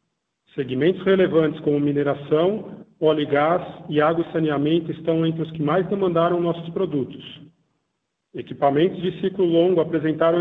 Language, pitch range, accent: Portuguese, 150-175 Hz, Brazilian